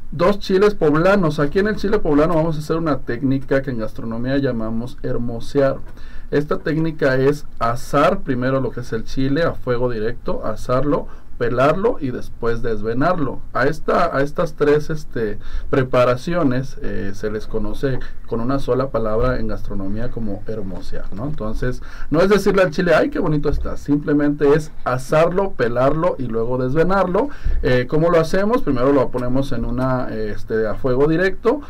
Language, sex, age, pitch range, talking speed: Spanish, male, 40-59, 115-155 Hz, 165 wpm